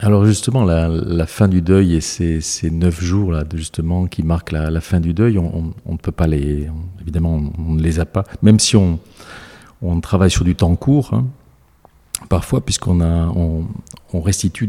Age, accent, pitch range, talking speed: 40-59, French, 85-100 Hz, 200 wpm